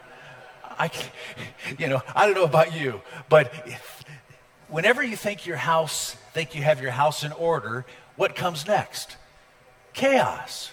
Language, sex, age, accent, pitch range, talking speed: English, male, 50-69, American, 125-155 Hz, 140 wpm